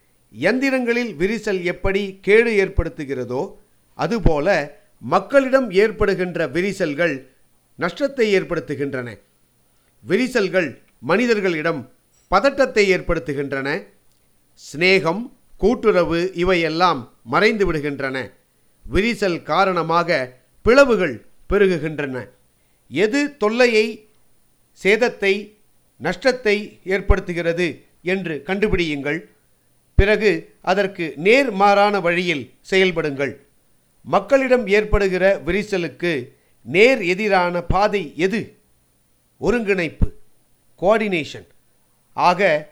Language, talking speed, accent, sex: Tamil, 65 wpm, native, male